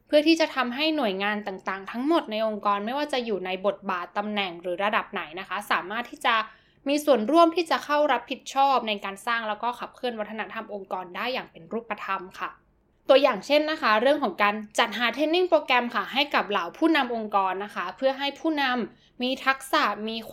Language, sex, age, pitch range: Thai, female, 10-29, 210-275 Hz